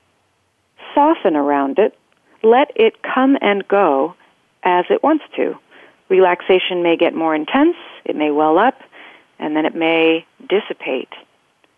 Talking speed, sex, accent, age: 130 wpm, female, American, 40-59